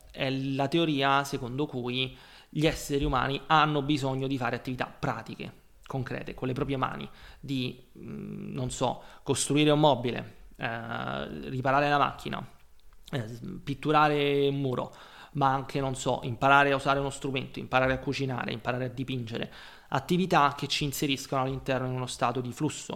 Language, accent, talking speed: Italian, native, 145 wpm